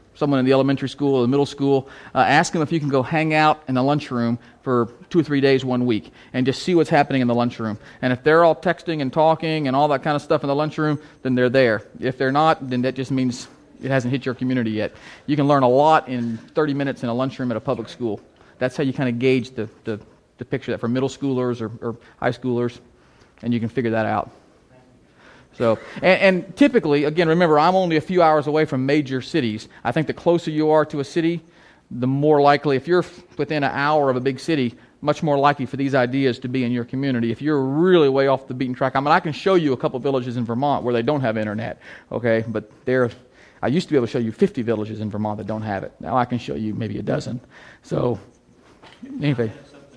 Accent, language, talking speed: American, English, 250 wpm